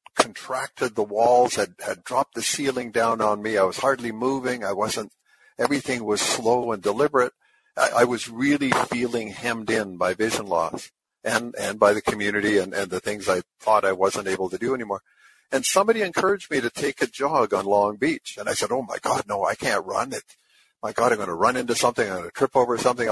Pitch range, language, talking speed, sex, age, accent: 110-135 Hz, English, 220 wpm, male, 50-69, American